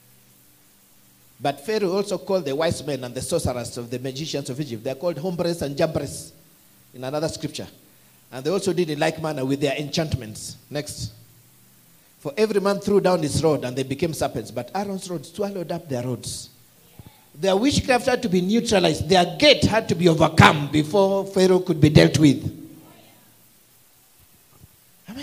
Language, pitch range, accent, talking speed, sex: English, 125-185 Hz, South African, 170 wpm, male